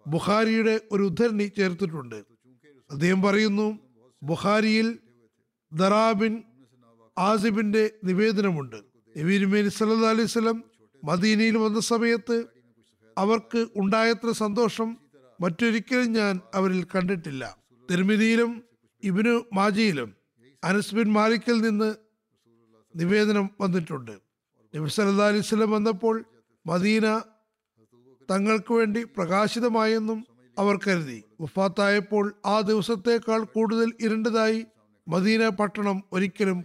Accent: native